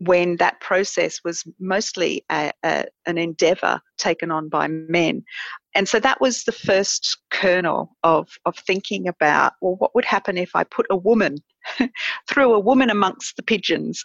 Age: 40-59